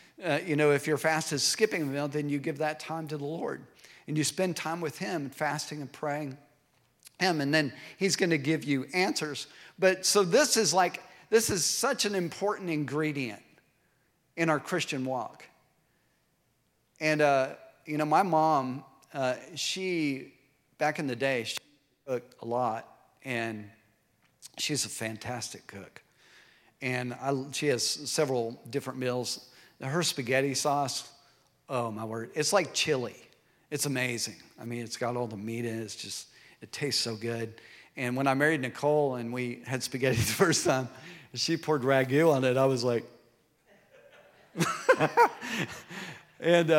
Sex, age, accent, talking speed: male, 50-69, American, 160 wpm